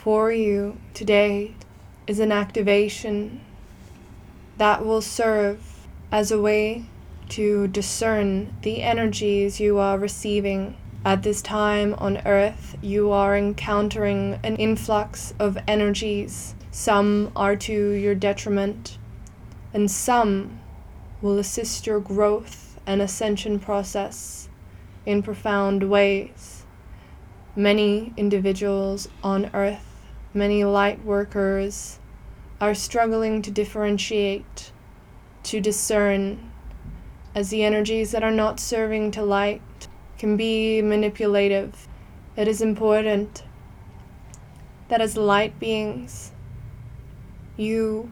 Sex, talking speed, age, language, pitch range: female, 100 wpm, 20-39, English, 195-215 Hz